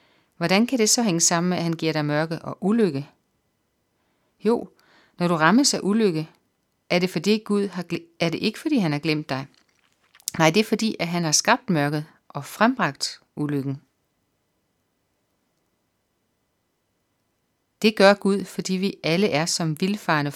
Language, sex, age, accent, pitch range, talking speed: Danish, female, 40-59, native, 155-200 Hz, 160 wpm